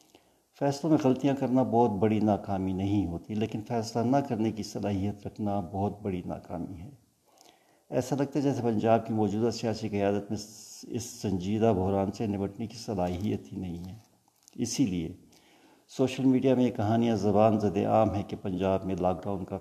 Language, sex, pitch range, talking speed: Urdu, male, 95-110 Hz, 175 wpm